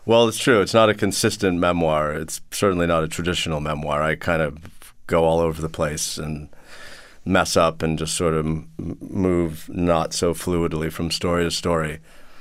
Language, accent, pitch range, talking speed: English, American, 85-100 Hz, 180 wpm